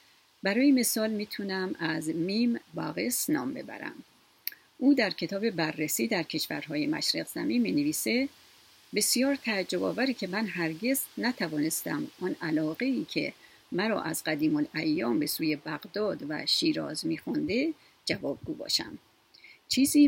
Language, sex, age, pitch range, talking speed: Persian, female, 40-59, 180-290 Hz, 120 wpm